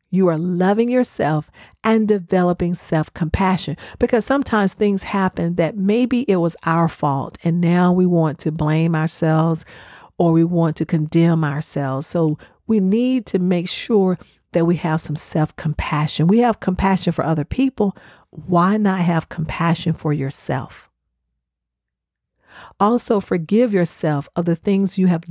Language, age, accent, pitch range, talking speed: English, 50-69, American, 155-190 Hz, 145 wpm